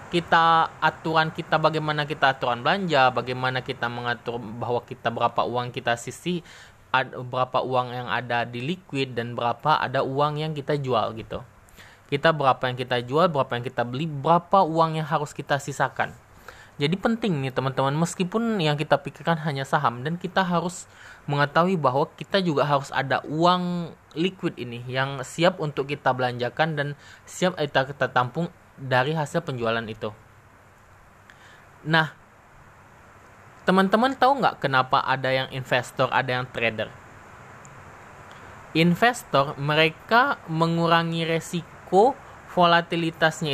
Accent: native